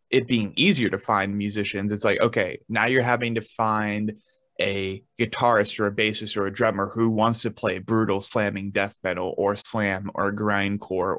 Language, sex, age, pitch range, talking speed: English, male, 20-39, 100-115 Hz, 180 wpm